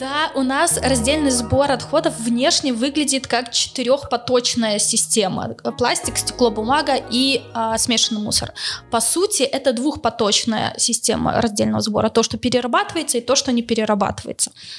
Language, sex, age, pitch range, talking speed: Russian, female, 20-39, 225-255 Hz, 140 wpm